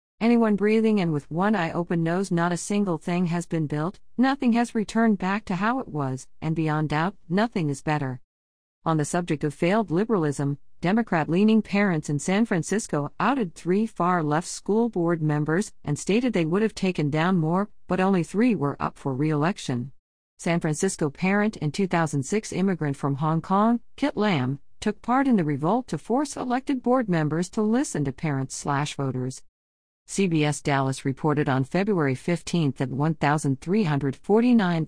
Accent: American